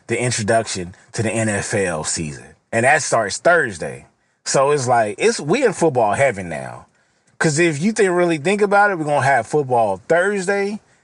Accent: American